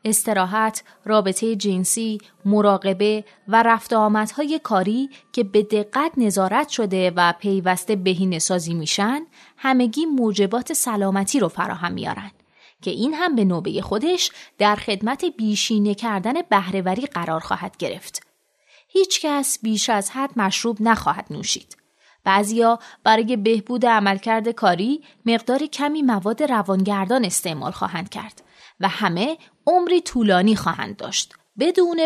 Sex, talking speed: female, 120 wpm